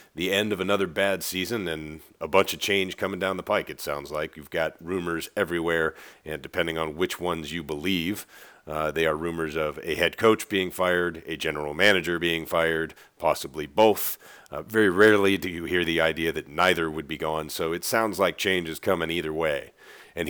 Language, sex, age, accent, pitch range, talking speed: English, male, 40-59, American, 80-90 Hz, 205 wpm